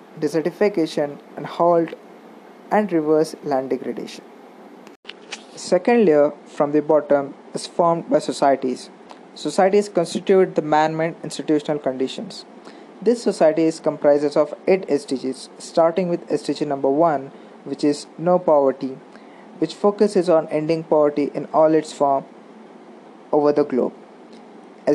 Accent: Indian